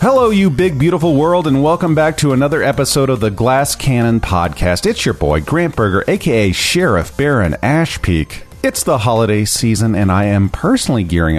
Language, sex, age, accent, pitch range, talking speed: English, male, 40-59, American, 90-135 Hz, 180 wpm